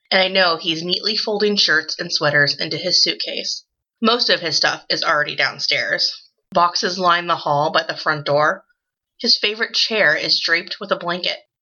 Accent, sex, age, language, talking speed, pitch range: American, female, 20-39, English, 180 wpm, 165-225 Hz